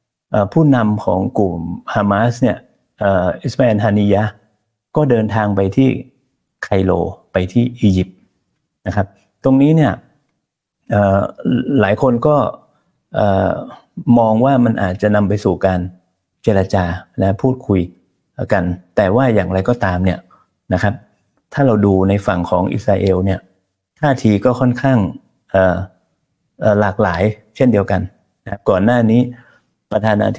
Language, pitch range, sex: Thai, 95-120 Hz, male